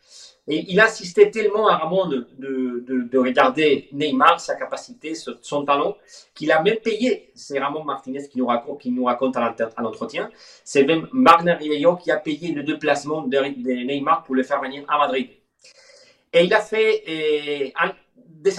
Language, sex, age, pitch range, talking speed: French, male, 40-59, 135-195 Hz, 185 wpm